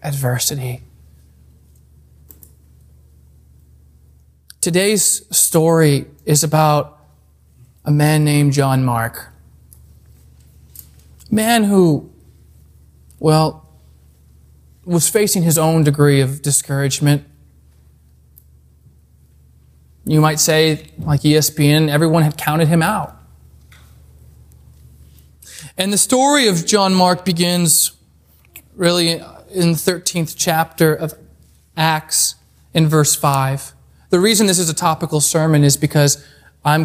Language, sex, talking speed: English, male, 95 wpm